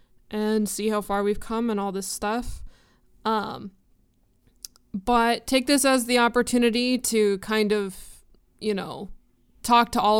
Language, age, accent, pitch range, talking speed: English, 20-39, American, 210-245 Hz, 145 wpm